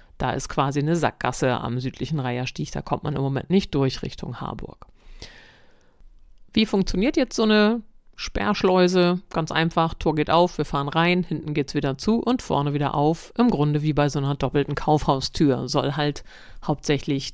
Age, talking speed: 50-69, 175 wpm